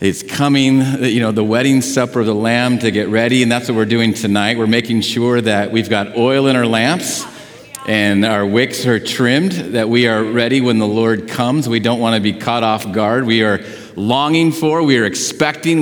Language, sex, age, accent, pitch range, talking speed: English, male, 50-69, American, 115-150 Hz, 215 wpm